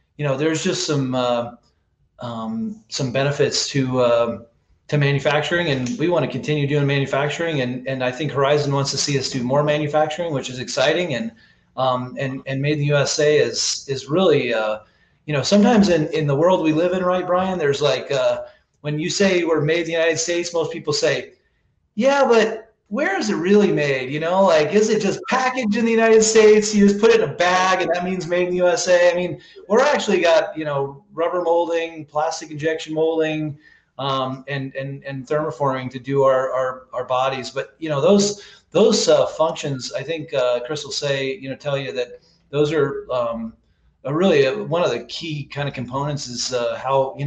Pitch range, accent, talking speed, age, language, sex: 135-175 Hz, American, 205 wpm, 30-49, English, male